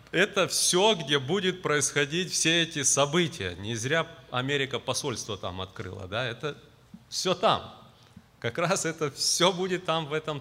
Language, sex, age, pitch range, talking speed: Russian, male, 30-49, 115-150 Hz, 150 wpm